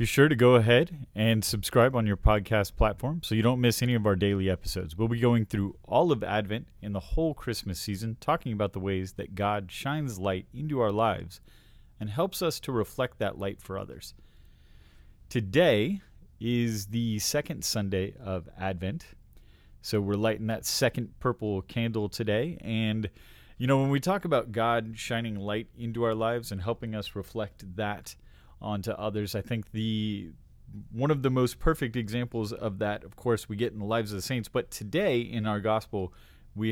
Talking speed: 190 wpm